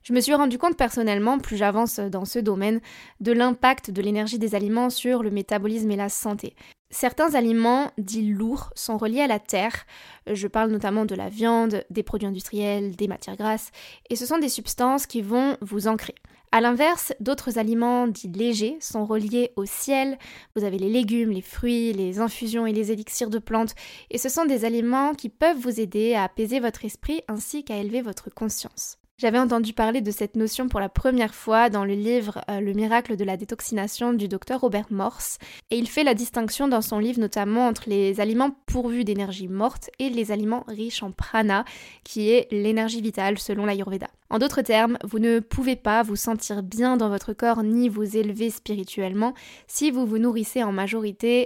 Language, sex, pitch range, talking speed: French, female, 210-245 Hz, 195 wpm